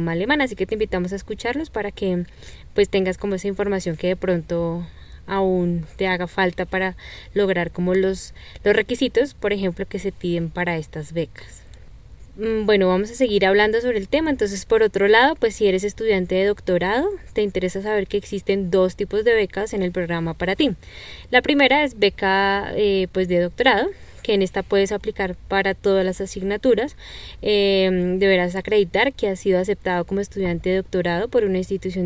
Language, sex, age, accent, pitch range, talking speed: Spanish, female, 10-29, Colombian, 185-215 Hz, 185 wpm